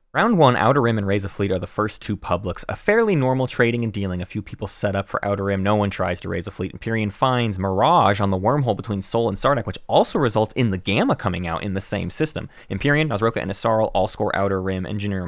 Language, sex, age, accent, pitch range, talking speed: English, male, 30-49, American, 95-130 Hz, 255 wpm